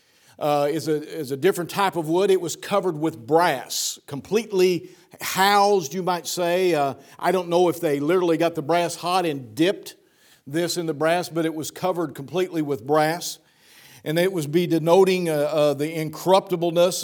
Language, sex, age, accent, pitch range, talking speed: English, male, 50-69, American, 155-185 Hz, 185 wpm